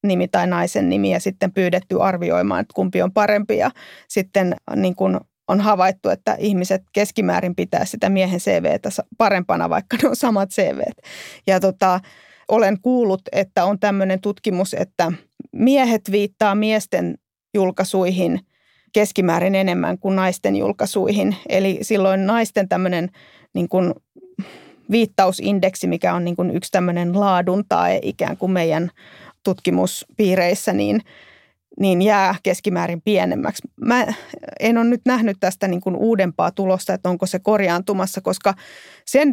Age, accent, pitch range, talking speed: 30-49, native, 185-210 Hz, 135 wpm